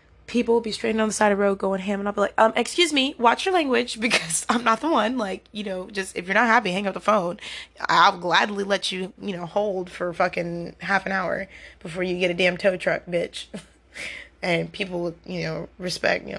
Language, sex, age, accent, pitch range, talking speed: English, female, 20-39, American, 185-250 Hz, 240 wpm